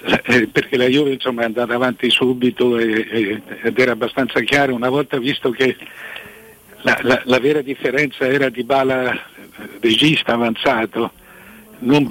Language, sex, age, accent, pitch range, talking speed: Italian, male, 60-79, native, 115-140 Hz, 160 wpm